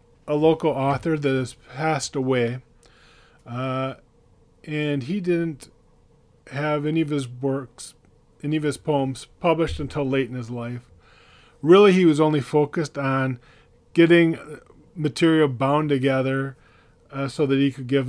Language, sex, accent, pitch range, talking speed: English, male, American, 120-150 Hz, 140 wpm